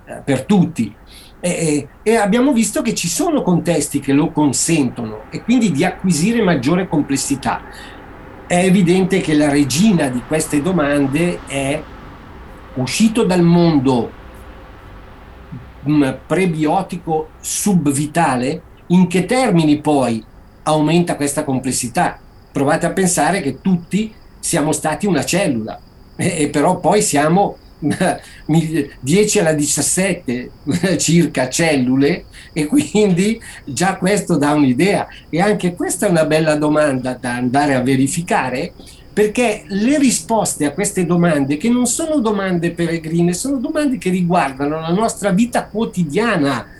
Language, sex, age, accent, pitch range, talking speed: Italian, male, 50-69, native, 145-200 Hz, 120 wpm